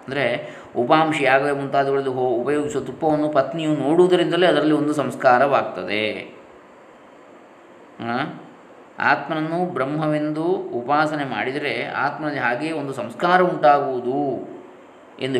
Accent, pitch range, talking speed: native, 120-145 Hz, 80 wpm